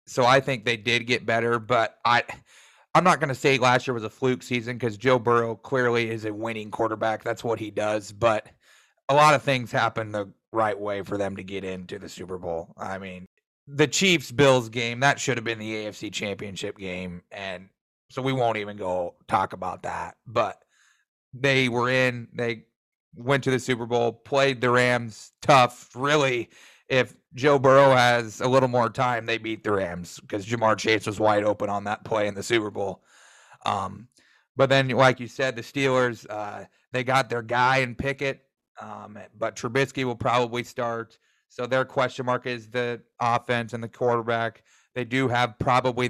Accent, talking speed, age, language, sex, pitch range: American, 190 wpm, 30-49, English, male, 110-130 Hz